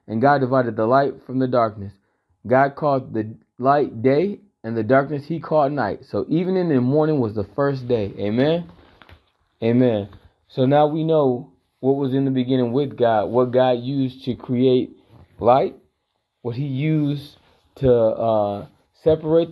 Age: 30-49